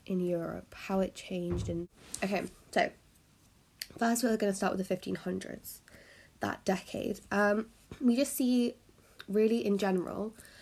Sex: female